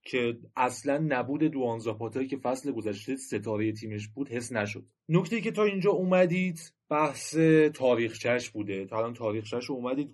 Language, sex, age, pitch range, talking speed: Persian, male, 30-49, 125-175 Hz, 150 wpm